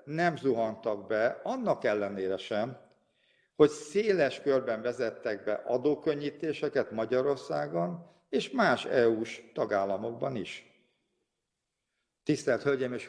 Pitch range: 115-155 Hz